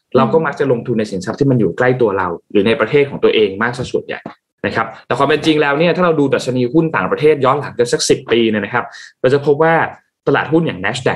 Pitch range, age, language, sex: 120-160 Hz, 20-39, Thai, male